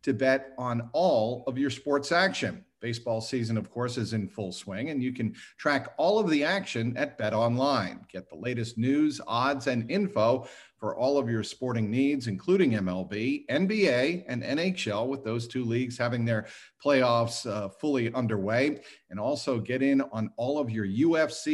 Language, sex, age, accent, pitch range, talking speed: English, male, 50-69, American, 115-140 Hz, 180 wpm